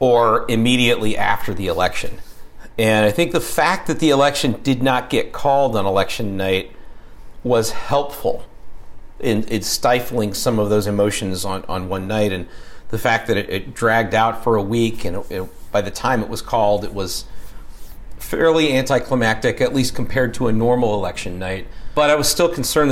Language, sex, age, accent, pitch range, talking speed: English, male, 40-59, American, 105-125 Hz, 180 wpm